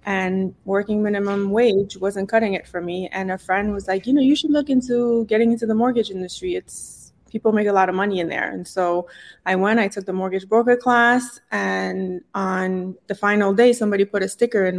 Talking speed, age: 220 wpm, 20-39